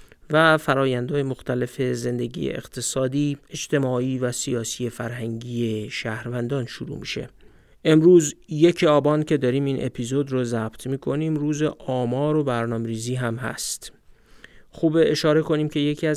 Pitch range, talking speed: 120-155 Hz, 125 wpm